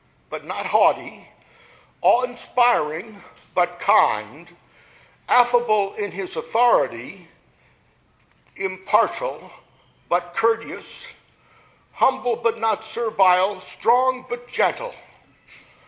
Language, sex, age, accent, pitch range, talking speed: English, male, 60-79, American, 205-255 Hz, 75 wpm